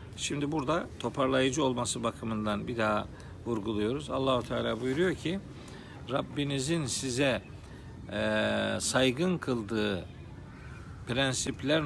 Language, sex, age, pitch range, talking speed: Turkish, male, 50-69, 105-145 Hz, 85 wpm